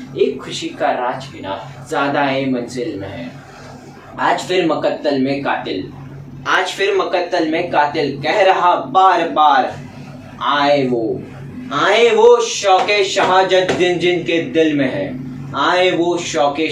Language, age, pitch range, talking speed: Hindi, 20-39, 130-165 Hz, 140 wpm